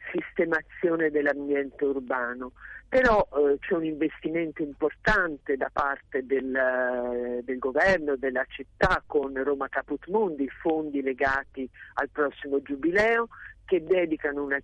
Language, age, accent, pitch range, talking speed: Italian, 50-69, native, 135-185 Hz, 110 wpm